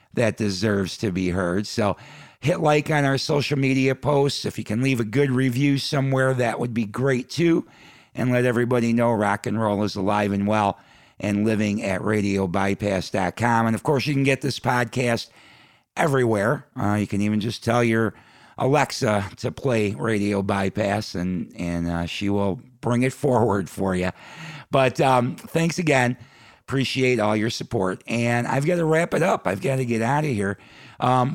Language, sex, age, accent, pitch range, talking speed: English, male, 50-69, American, 100-130 Hz, 180 wpm